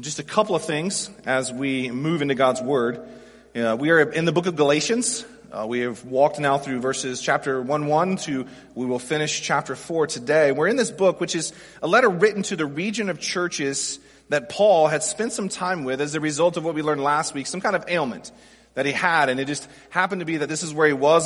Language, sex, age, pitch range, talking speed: English, male, 30-49, 145-215 Hz, 240 wpm